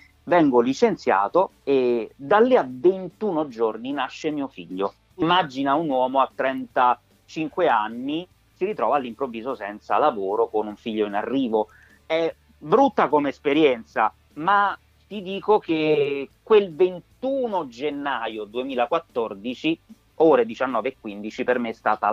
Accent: native